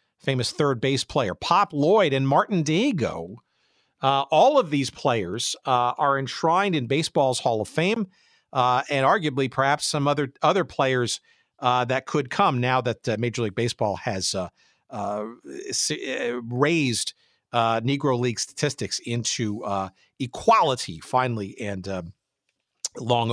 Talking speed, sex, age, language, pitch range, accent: 140 wpm, male, 50-69, English, 120-160 Hz, American